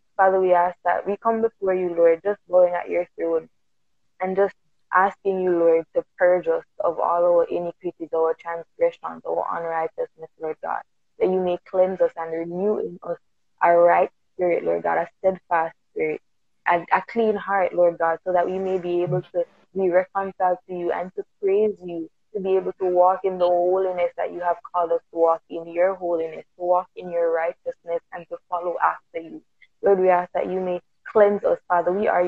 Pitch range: 170-185 Hz